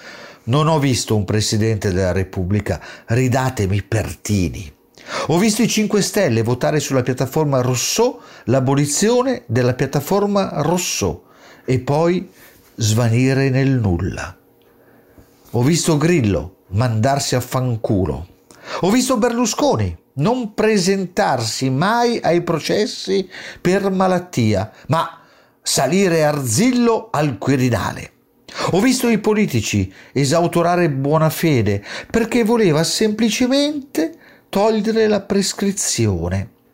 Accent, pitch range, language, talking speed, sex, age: native, 120-200 Hz, Italian, 100 wpm, male, 50-69